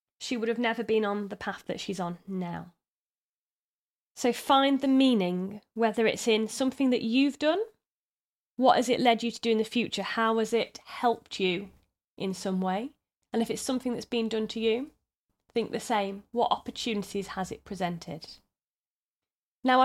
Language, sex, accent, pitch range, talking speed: English, female, British, 210-265 Hz, 180 wpm